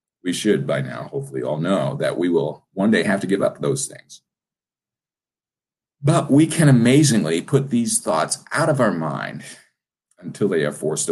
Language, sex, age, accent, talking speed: English, male, 50-69, American, 180 wpm